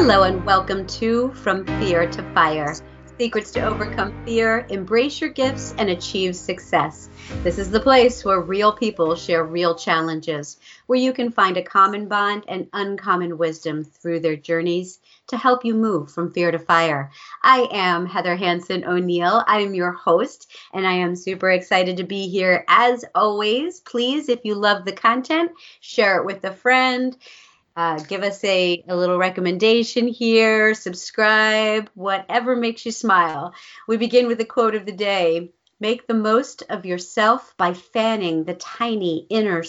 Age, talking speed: 40-59, 165 wpm